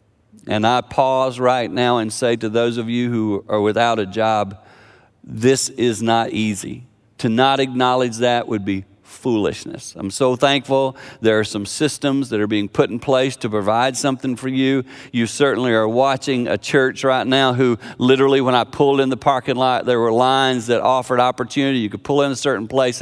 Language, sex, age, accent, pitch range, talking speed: English, male, 50-69, American, 105-130 Hz, 195 wpm